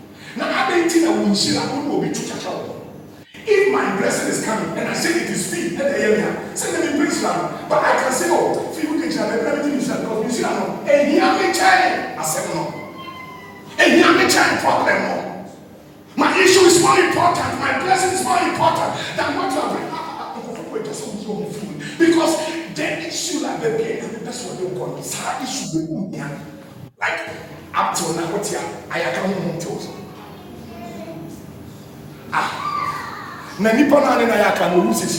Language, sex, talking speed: English, male, 120 wpm